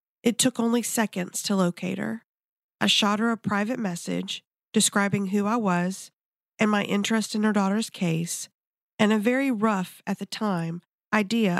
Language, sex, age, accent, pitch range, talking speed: English, female, 40-59, American, 185-220 Hz, 165 wpm